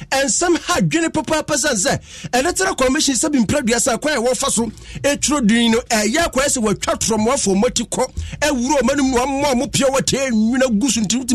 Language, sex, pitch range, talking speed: English, male, 150-245 Hz, 215 wpm